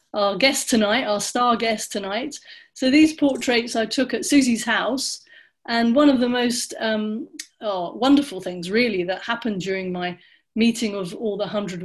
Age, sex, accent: 30-49, female, British